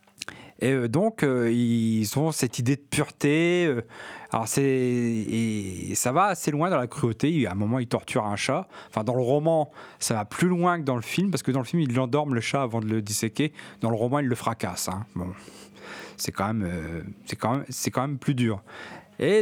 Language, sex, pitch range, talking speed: French, male, 110-145 Hz, 225 wpm